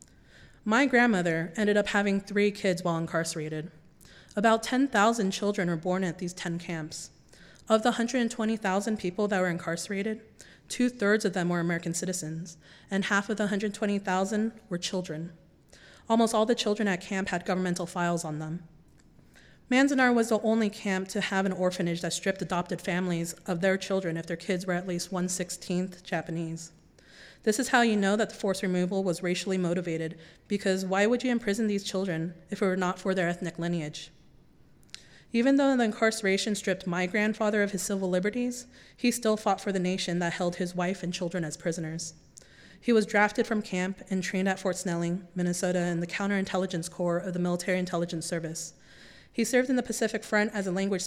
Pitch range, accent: 175-210 Hz, American